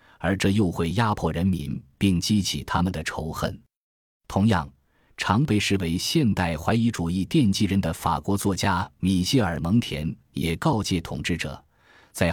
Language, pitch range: Chinese, 85-115 Hz